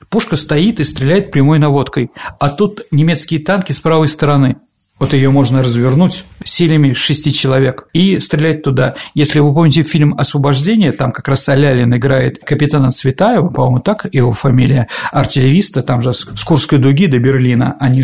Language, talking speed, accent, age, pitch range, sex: Russian, 160 wpm, native, 50-69, 135-170 Hz, male